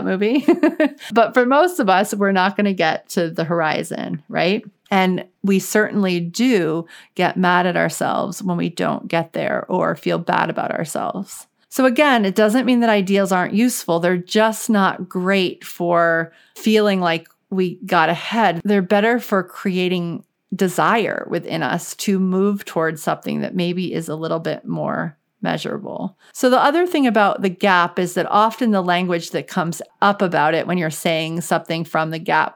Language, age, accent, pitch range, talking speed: English, 40-59, American, 170-215 Hz, 175 wpm